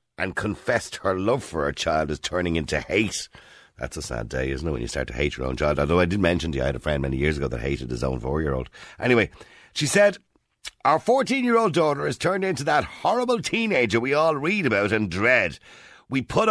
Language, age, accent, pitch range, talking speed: English, 50-69, Irish, 75-115 Hz, 230 wpm